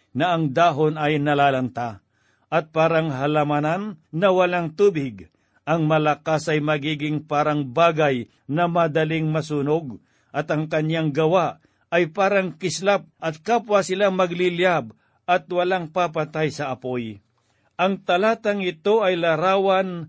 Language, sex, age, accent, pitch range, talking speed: Filipino, male, 50-69, native, 150-180 Hz, 120 wpm